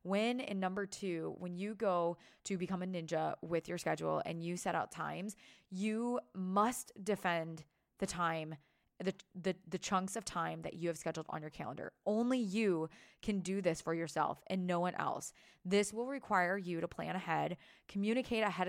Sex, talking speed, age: female, 185 wpm, 20-39